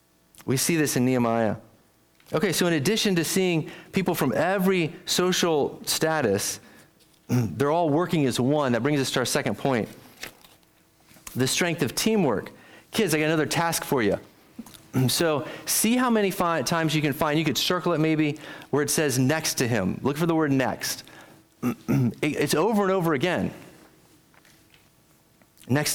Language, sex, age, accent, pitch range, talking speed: English, male, 30-49, American, 145-185 Hz, 160 wpm